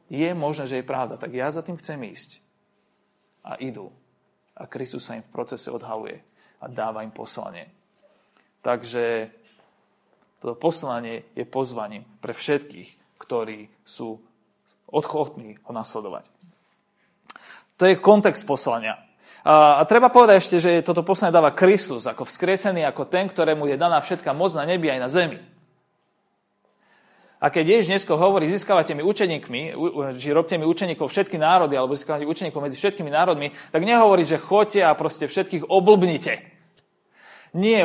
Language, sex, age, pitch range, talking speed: Slovak, male, 30-49, 145-195 Hz, 145 wpm